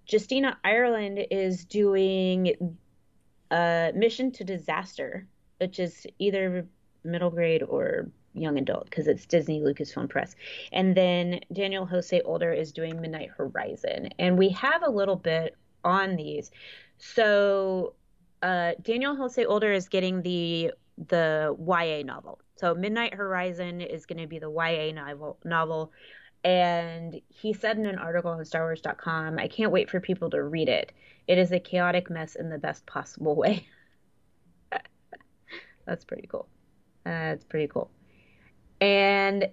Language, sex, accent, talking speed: English, female, American, 145 wpm